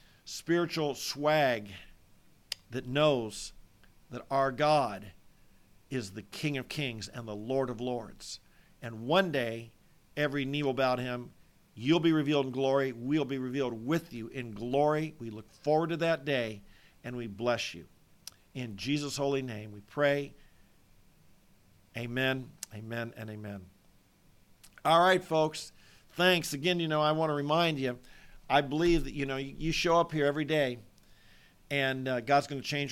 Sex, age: male, 50-69